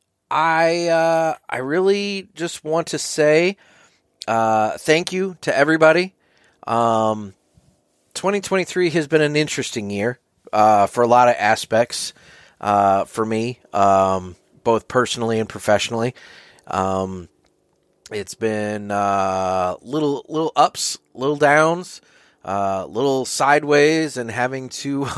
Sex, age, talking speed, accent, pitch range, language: male, 30-49, 120 wpm, American, 105-145 Hz, English